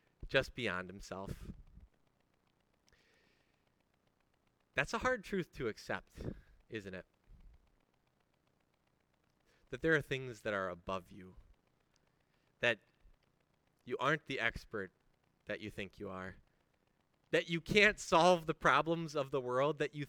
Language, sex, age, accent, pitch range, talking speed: English, male, 30-49, American, 105-165 Hz, 120 wpm